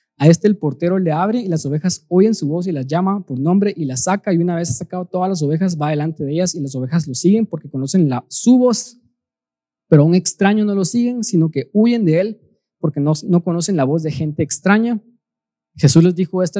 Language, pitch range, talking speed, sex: Spanish, 145-195 Hz, 240 wpm, male